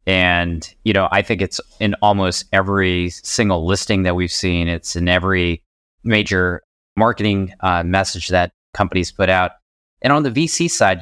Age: 20-39